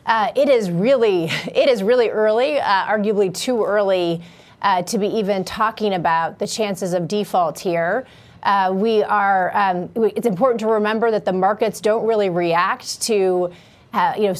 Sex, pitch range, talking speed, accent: female, 195-230 Hz, 175 wpm, American